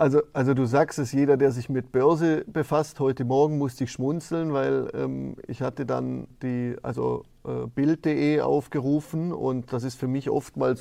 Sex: male